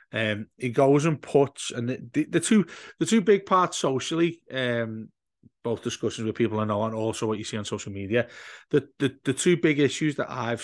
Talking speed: 210 wpm